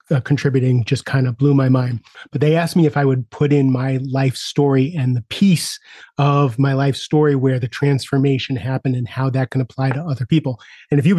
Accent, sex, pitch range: American, male, 130-145 Hz